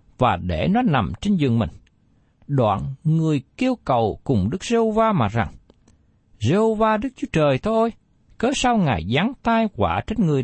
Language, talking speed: Vietnamese, 165 wpm